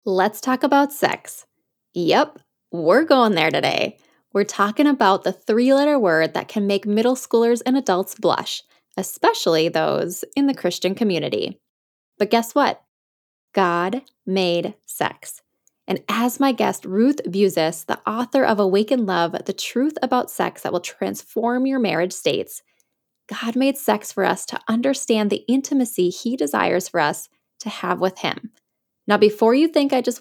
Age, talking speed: 10-29, 155 wpm